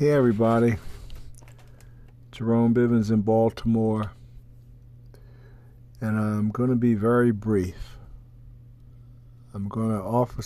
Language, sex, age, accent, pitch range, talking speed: English, male, 50-69, American, 105-120 Hz, 100 wpm